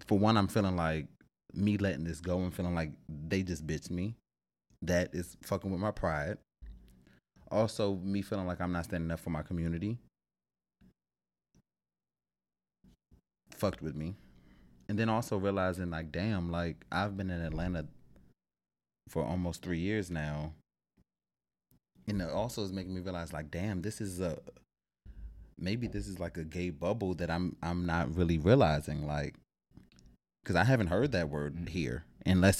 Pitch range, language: 75-100 Hz, English